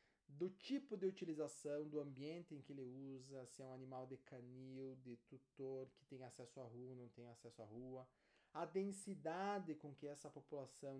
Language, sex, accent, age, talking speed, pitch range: Portuguese, male, Brazilian, 20-39, 185 wpm, 130-160 Hz